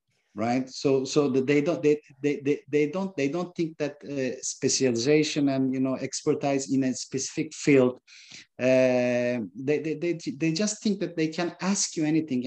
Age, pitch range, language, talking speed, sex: 50-69, 120-155 Hz, English, 180 wpm, male